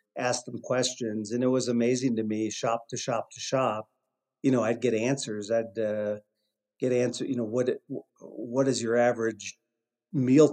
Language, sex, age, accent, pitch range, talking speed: English, male, 50-69, American, 115-130 Hz, 175 wpm